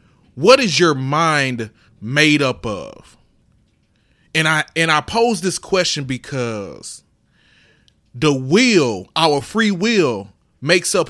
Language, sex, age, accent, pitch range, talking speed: English, male, 30-49, American, 130-190 Hz, 120 wpm